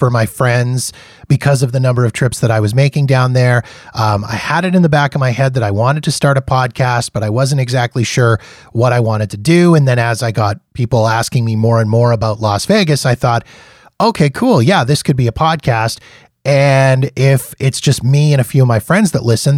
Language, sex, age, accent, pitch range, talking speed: English, male, 30-49, American, 115-140 Hz, 240 wpm